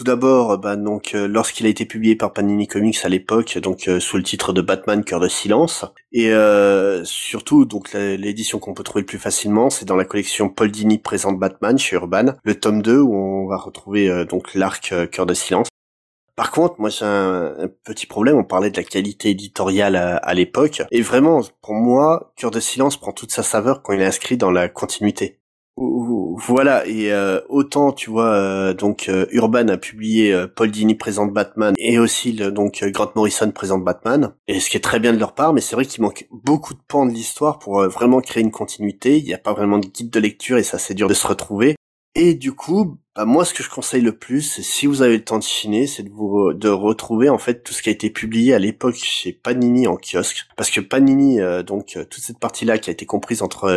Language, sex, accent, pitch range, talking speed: French, male, French, 100-120 Hz, 240 wpm